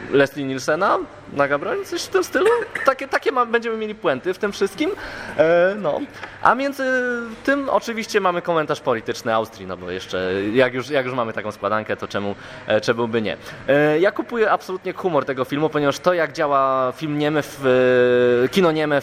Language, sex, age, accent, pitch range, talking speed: Polish, male, 20-39, native, 120-165 Hz, 185 wpm